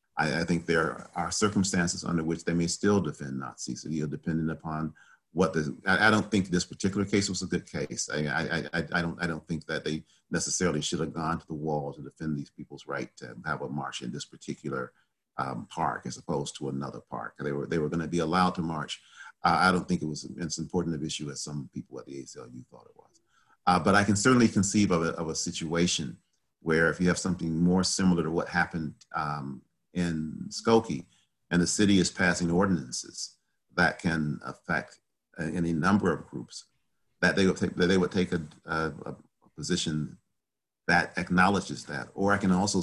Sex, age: male, 40-59